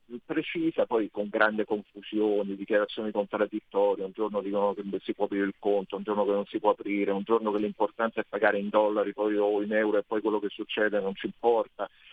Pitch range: 105-125 Hz